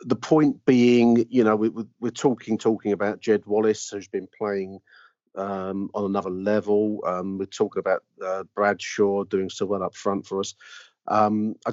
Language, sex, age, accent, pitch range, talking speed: English, male, 40-59, British, 100-115 Hz, 175 wpm